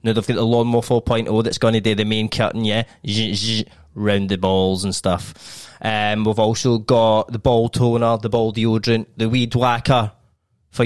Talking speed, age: 200 wpm, 20-39